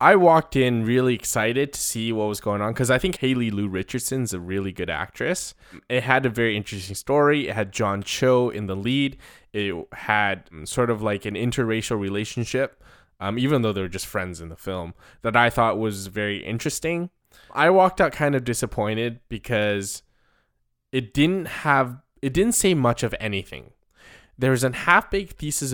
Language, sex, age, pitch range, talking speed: English, male, 20-39, 105-140 Hz, 185 wpm